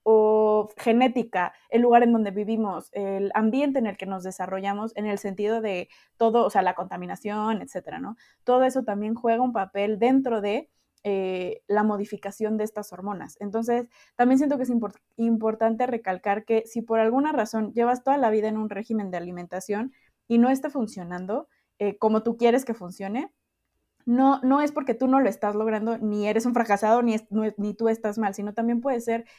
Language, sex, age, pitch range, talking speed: Spanish, female, 20-39, 205-245 Hz, 195 wpm